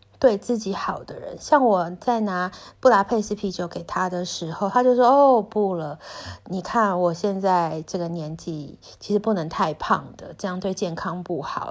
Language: Chinese